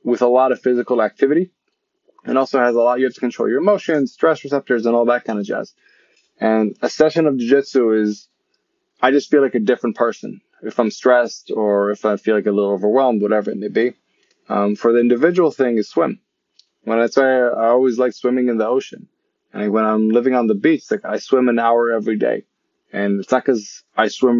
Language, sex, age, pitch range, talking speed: English, male, 20-39, 115-135 Hz, 220 wpm